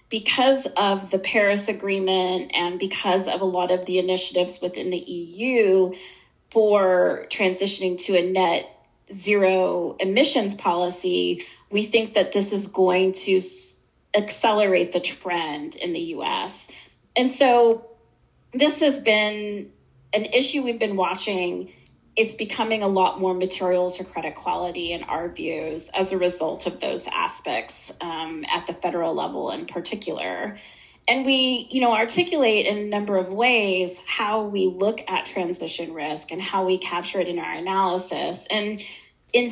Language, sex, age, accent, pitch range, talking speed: English, female, 30-49, American, 180-220 Hz, 150 wpm